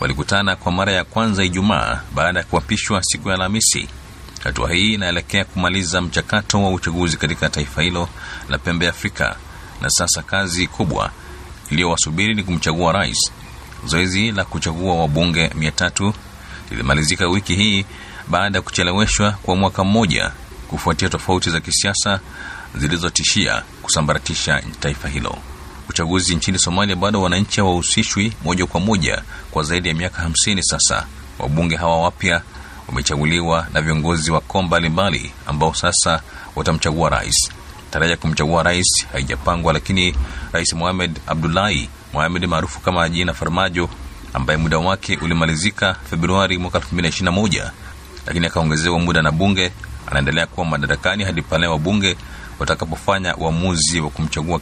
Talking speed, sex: 130 wpm, male